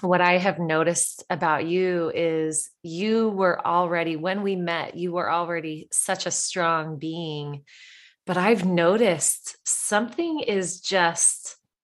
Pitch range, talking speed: 155-185 Hz, 130 wpm